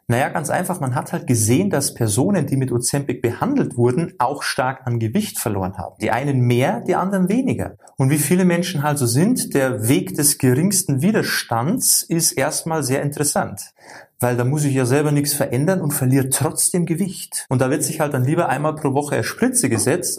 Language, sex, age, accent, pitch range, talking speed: German, male, 30-49, German, 125-160 Hz, 200 wpm